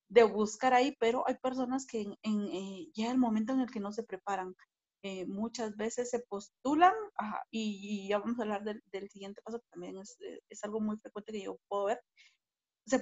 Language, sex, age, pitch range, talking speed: Spanish, female, 40-59, 210-260 Hz, 215 wpm